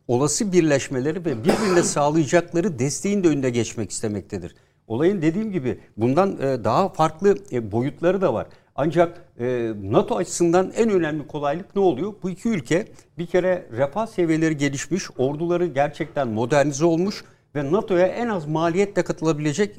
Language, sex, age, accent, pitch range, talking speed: Turkish, male, 60-79, native, 135-180 Hz, 135 wpm